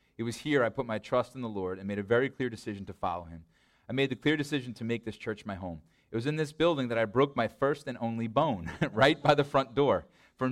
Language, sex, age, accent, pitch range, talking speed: English, male, 30-49, American, 110-145 Hz, 280 wpm